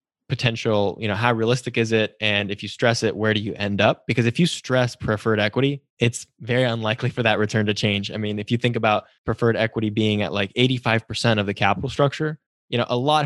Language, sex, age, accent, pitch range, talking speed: English, male, 10-29, American, 110-130 Hz, 230 wpm